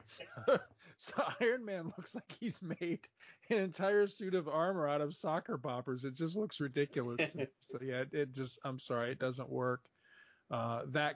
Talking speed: 190 wpm